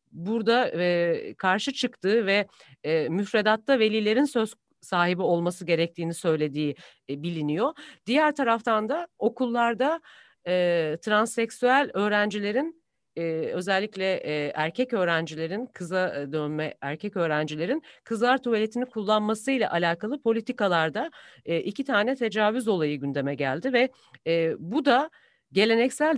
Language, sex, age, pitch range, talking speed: Turkish, female, 40-59, 170-245 Hz, 90 wpm